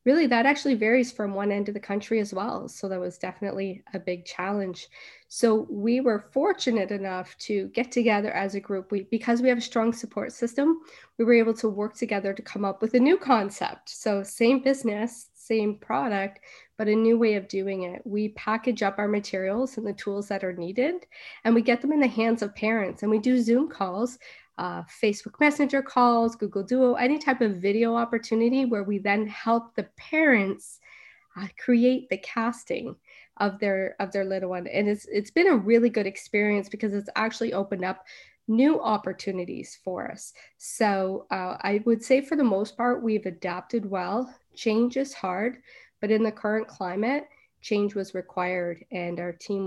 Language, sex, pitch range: English, female, 195-235 Hz